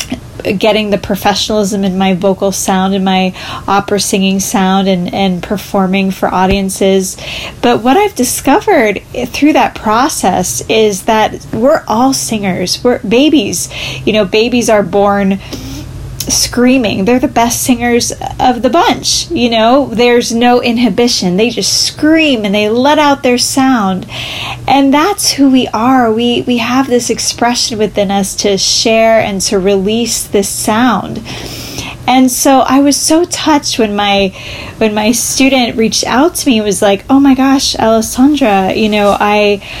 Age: 10-29